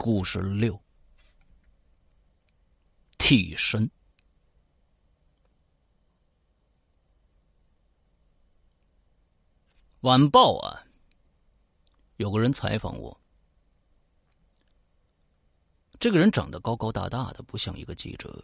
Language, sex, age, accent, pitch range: Chinese, male, 50-69, native, 70-110 Hz